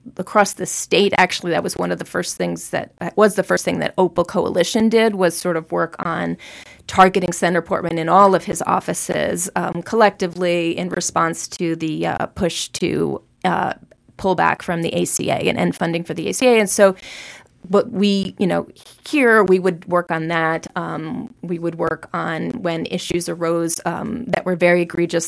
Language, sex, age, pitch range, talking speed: English, female, 30-49, 170-200 Hz, 190 wpm